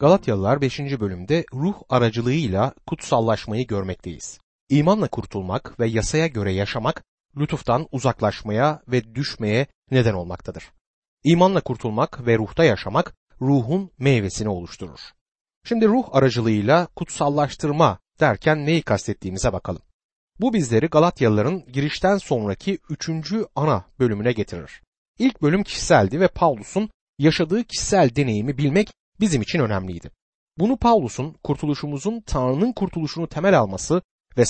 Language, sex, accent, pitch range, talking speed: Turkish, male, native, 110-175 Hz, 110 wpm